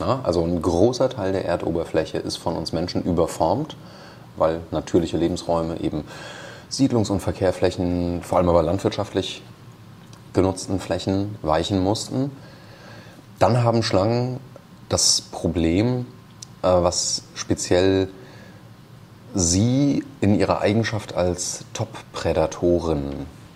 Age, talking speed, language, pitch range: 30-49, 100 wpm, German, 85-110 Hz